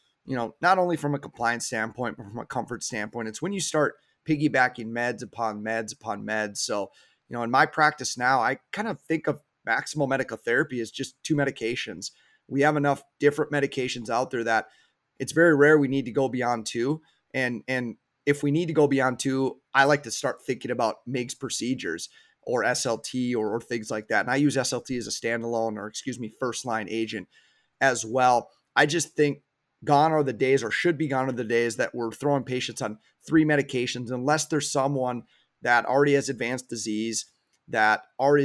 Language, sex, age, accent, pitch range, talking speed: English, male, 30-49, American, 120-145 Hz, 200 wpm